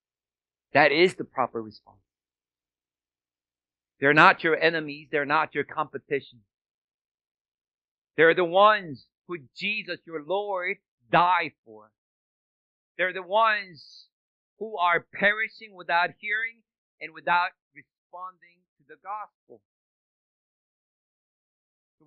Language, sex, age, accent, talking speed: English, male, 50-69, American, 100 wpm